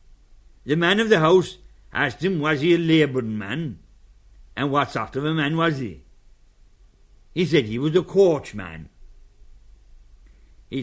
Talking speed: 150 wpm